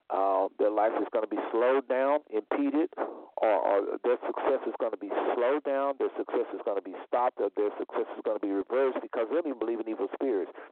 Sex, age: male, 50-69